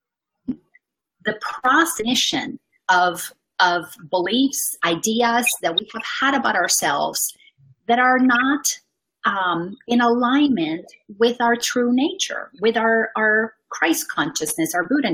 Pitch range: 210-280 Hz